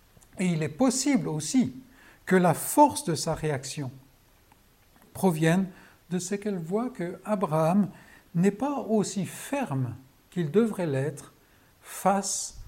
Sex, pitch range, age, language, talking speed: male, 140-205 Hz, 60-79, French, 120 wpm